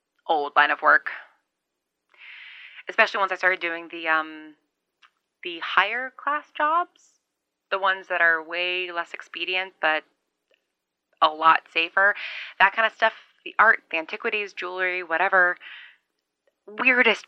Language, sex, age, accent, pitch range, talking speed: English, female, 20-39, American, 160-220 Hz, 130 wpm